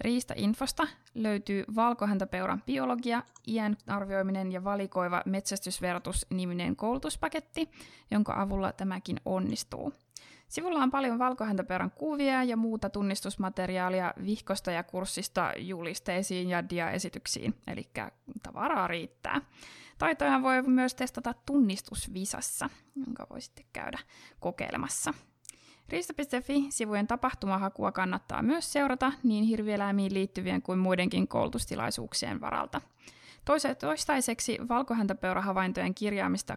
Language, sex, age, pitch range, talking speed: Finnish, female, 20-39, 185-250 Hz, 90 wpm